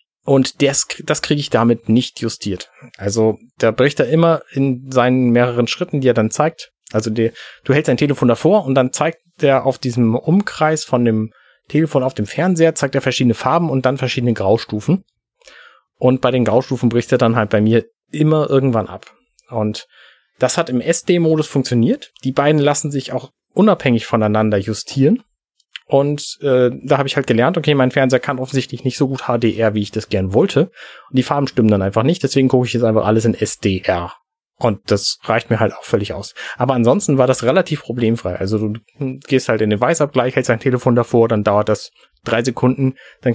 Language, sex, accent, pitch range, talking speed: German, male, German, 115-145 Hz, 195 wpm